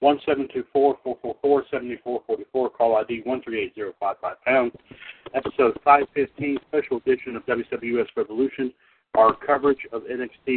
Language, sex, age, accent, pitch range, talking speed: English, male, 60-79, American, 125-140 Hz, 155 wpm